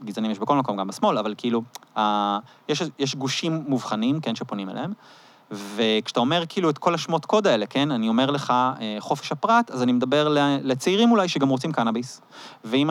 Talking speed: 185 wpm